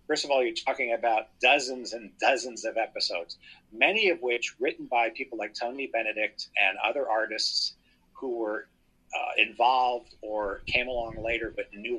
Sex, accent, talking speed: male, American, 165 wpm